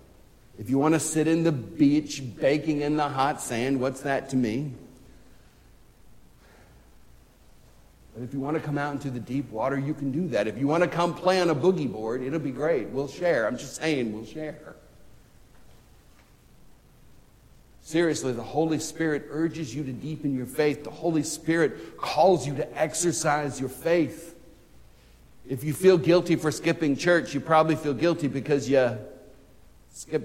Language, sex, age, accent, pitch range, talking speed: English, male, 60-79, American, 140-190 Hz, 170 wpm